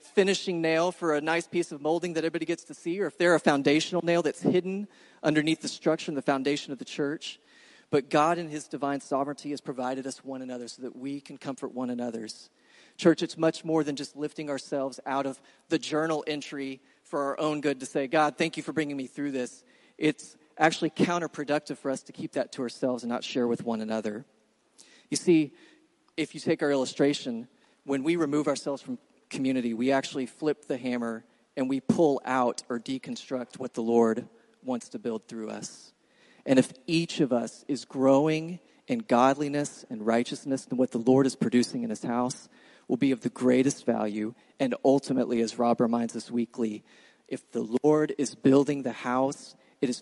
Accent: American